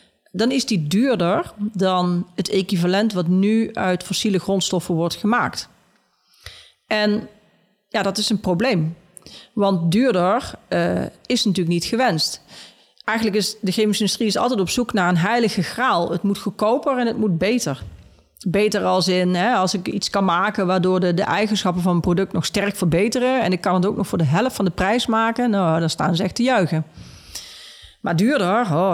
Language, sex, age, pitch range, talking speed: Dutch, female, 40-59, 175-215 Hz, 185 wpm